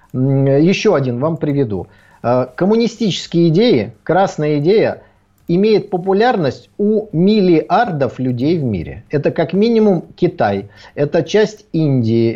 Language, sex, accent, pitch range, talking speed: Russian, male, native, 145-195 Hz, 105 wpm